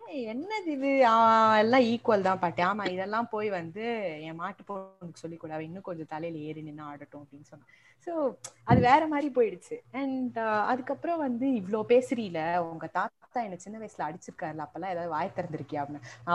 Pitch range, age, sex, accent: 165-245 Hz, 30-49, female, native